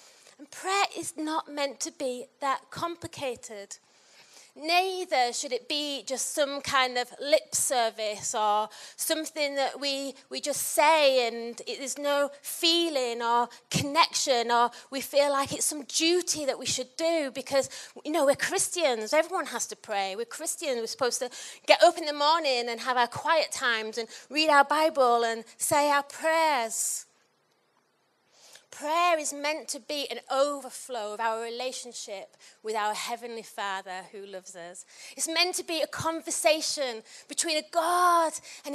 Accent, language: British, English